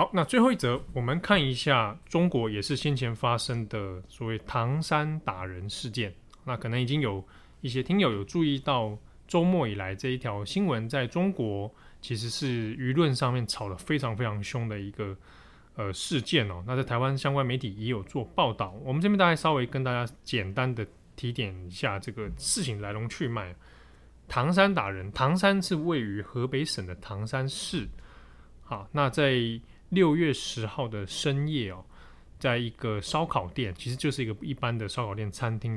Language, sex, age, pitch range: Chinese, male, 20-39, 105-140 Hz